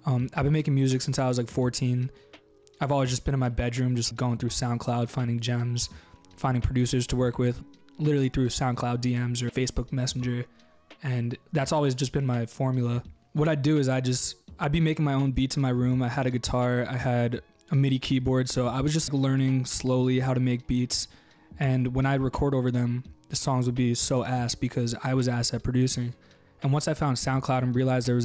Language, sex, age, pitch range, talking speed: English, male, 20-39, 120-135 Hz, 215 wpm